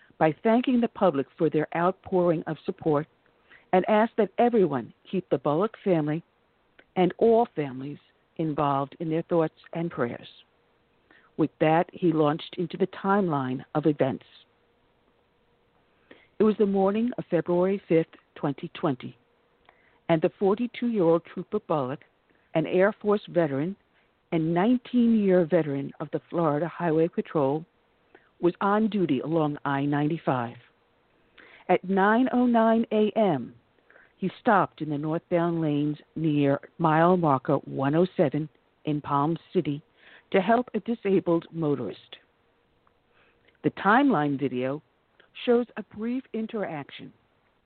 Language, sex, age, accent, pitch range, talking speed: English, female, 50-69, American, 155-205 Hz, 115 wpm